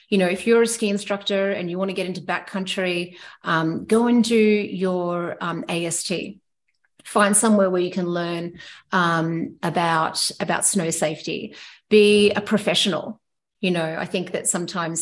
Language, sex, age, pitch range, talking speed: English, female, 30-49, 175-210 Hz, 165 wpm